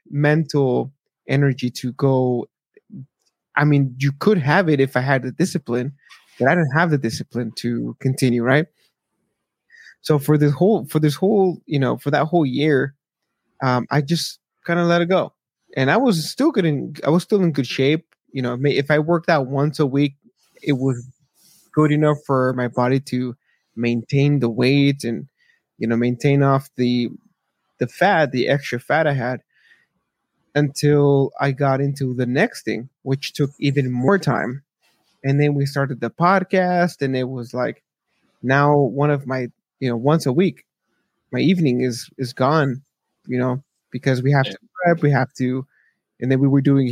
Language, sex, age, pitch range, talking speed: English, male, 20-39, 130-160 Hz, 180 wpm